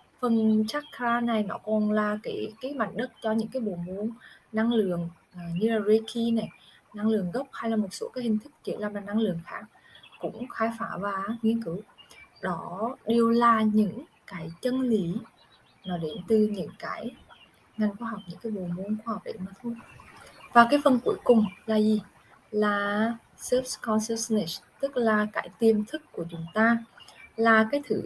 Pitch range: 205-235 Hz